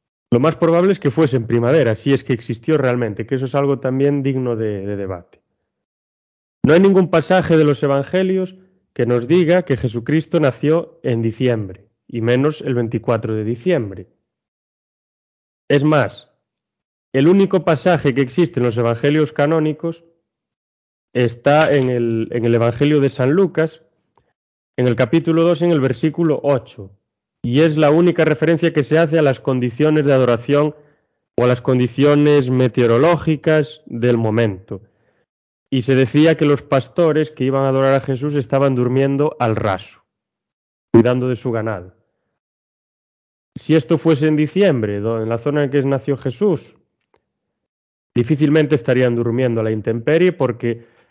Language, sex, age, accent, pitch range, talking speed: Spanish, male, 30-49, Spanish, 115-155 Hz, 150 wpm